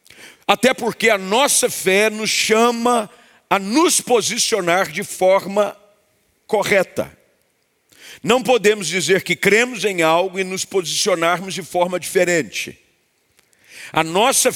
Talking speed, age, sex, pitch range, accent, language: 115 wpm, 50-69, male, 185-225 Hz, Brazilian, Portuguese